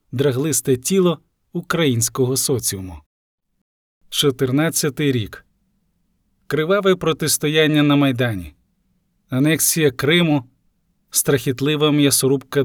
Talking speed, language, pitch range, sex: 65 wpm, Ukrainian, 120-155 Hz, male